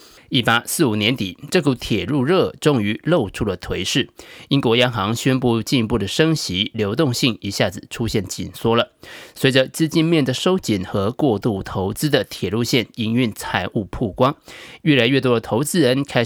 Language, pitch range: Chinese, 105-150 Hz